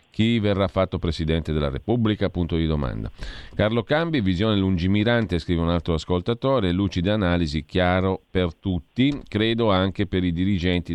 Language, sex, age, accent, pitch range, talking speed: Italian, male, 40-59, native, 90-115 Hz, 150 wpm